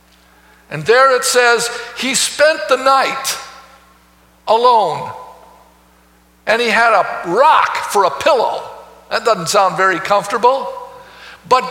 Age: 50-69